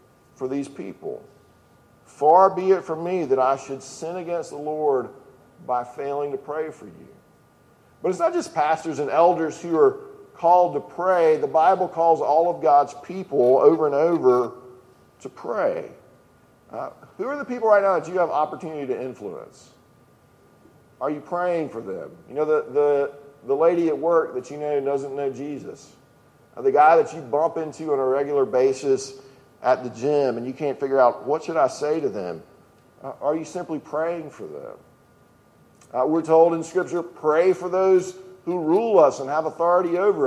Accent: American